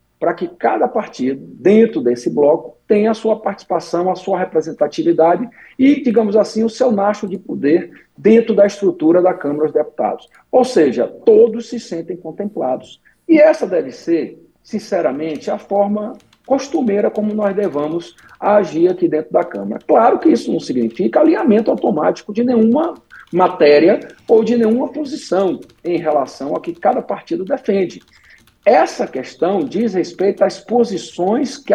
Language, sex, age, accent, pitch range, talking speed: Portuguese, male, 50-69, Brazilian, 160-240 Hz, 150 wpm